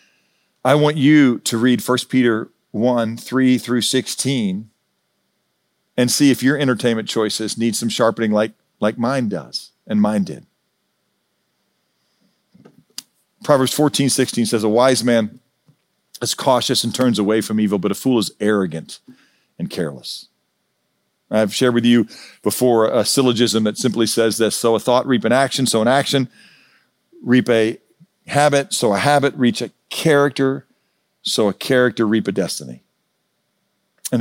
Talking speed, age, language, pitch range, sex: 145 wpm, 40-59, English, 110-135 Hz, male